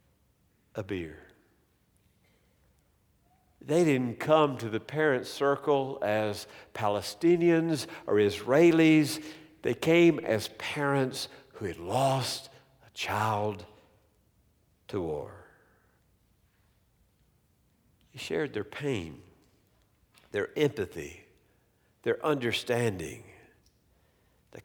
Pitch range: 105-140 Hz